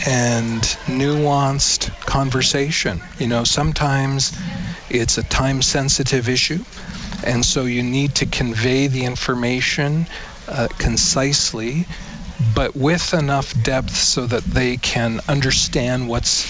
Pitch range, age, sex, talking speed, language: 120-150 Hz, 40-59, male, 115 wpm, English